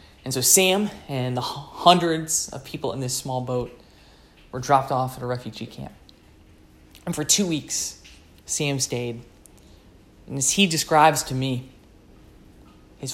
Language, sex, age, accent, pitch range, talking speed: English, male, 20-39, American, 95-145 Hz, 145 wpm